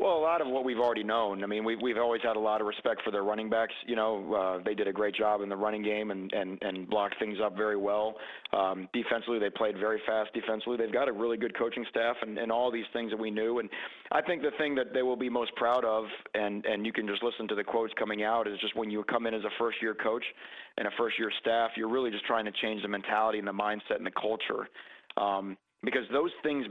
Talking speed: 265 wpm